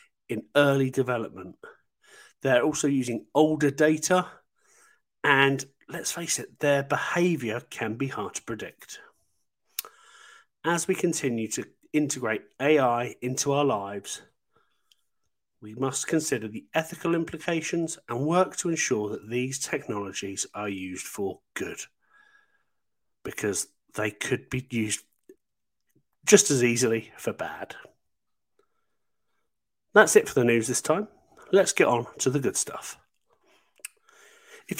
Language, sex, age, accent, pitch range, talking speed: English, male, 40-59, British, 135-205 Hz, 120 wpm